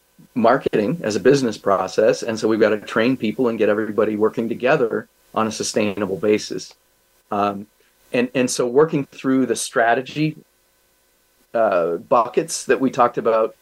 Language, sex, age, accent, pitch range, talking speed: English, male, 40-59, American, 105-125 Hz, 155 wpm